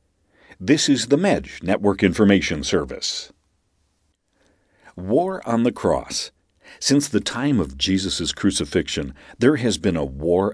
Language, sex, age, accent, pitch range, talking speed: English, male, 50-69, American, 90-120 Hz, 125 wpm